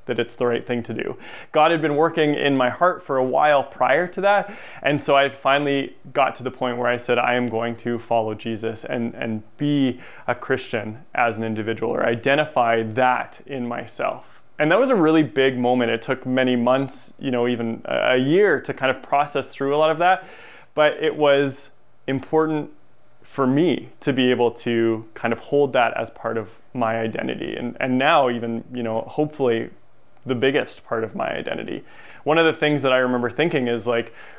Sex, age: male, 20-39